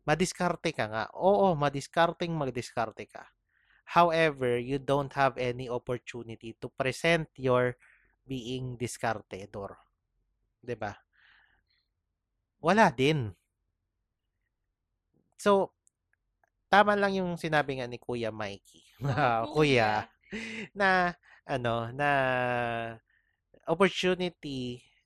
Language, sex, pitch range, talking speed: English, male, 115-150 Hz, 85 wpm